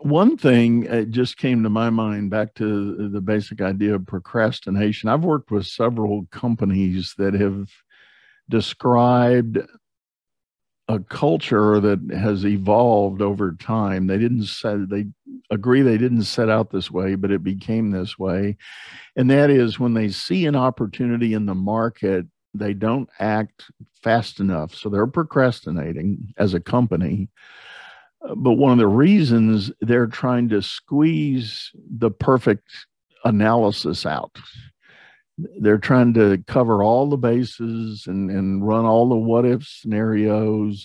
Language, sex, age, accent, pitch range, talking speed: English, male, 50-69, American, 100-115 Hz, 140 wpm